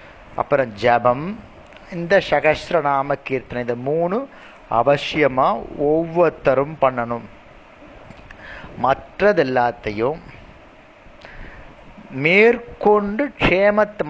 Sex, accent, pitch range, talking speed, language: male, native, 125-180 Hz, 60 wpm, Tamil